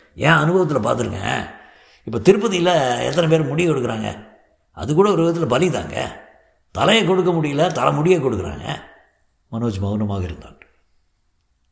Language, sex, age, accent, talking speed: Tamil, male, 60-79, native, 120 wpm